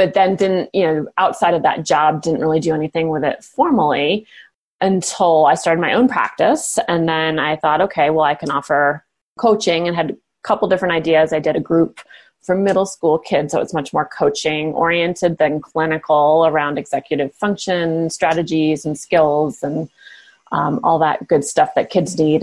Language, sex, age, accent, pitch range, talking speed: English, female, 30-49, American, 155-180 Hz, 185 wpm